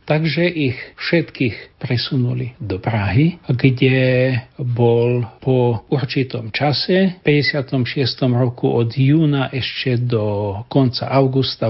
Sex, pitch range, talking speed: male, 120-150 Hz, 105 wpm